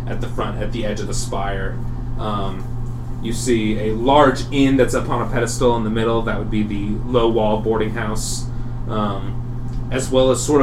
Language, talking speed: English, 190 wpm